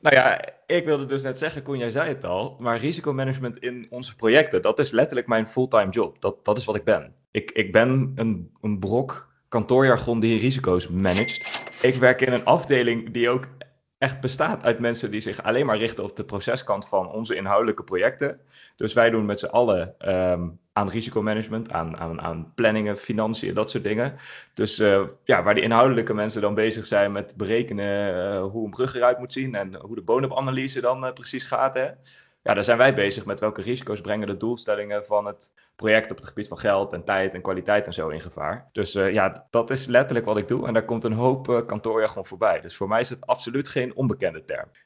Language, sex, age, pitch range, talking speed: Dutch, male, 20-39, 105-130 Hz, 215 wpm